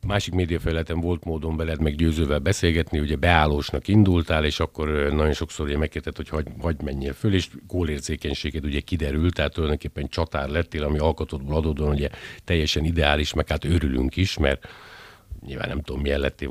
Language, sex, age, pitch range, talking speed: Hungarian, male, 50-69, 75-90 Hz, 155 wpm